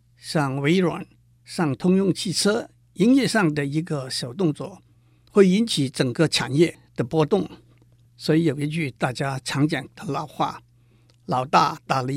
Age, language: 60-79, Chinese